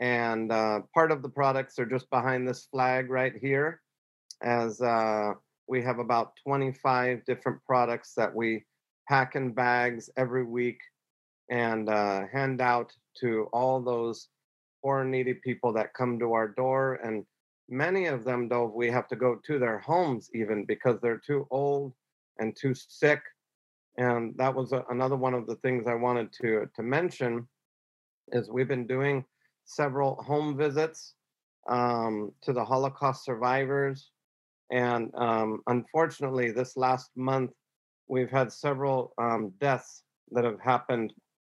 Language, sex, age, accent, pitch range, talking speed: English, male, 40-59, American, 120-135 Hz, 150 wpm